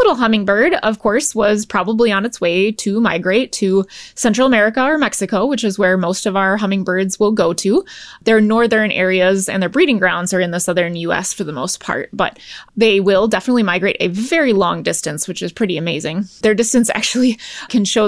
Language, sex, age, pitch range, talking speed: English, female, 20-39, 200-265 Hz, 200 wpm